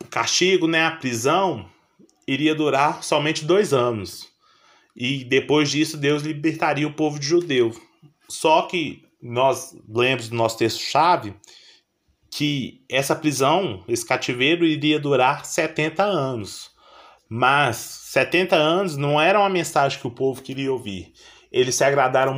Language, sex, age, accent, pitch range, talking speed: Portuguese, male, 20-39, Brazilian, 130-160 Hz, 130 wpm